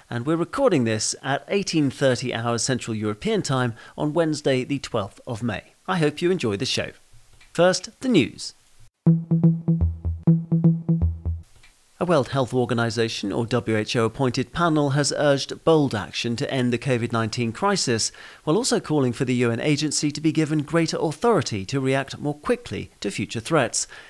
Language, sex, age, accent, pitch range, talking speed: English, male, 40-59, British, 115-155 Hz, 150 wpm